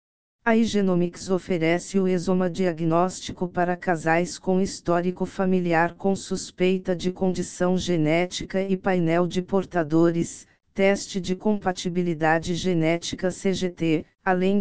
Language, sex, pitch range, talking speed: Portuguese, female, 170-190 Hz, 105 wpm